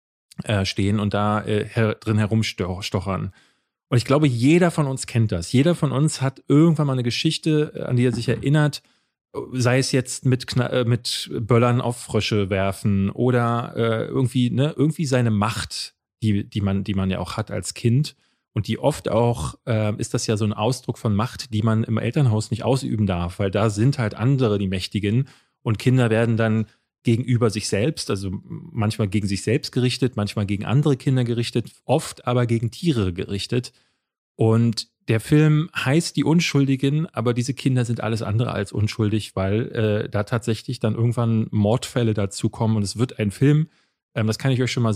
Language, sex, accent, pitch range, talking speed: German, male, German, 105-130 Hz, 180 wpm